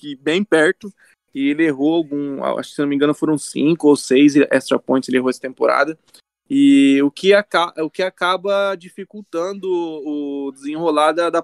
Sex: male